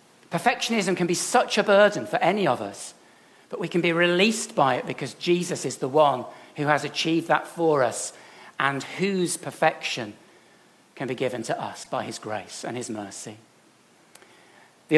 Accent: British